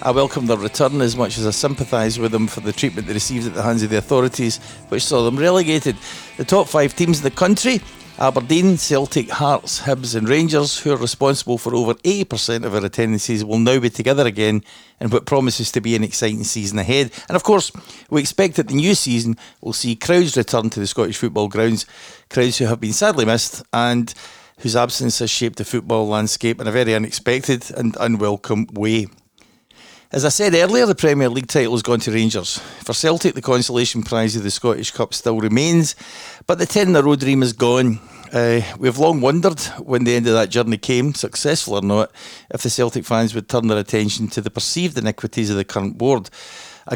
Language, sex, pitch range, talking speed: English, male, 110-130 Hz, 210 wpm